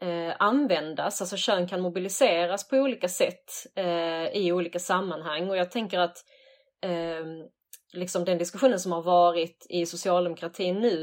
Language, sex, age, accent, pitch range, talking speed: Swedish, female, 30-49, native, 170-195 Hz, 130 wpm